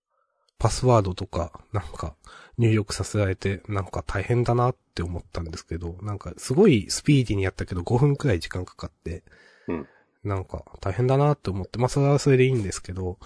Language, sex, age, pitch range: Japanese, male, 20-39, 95-130 Hz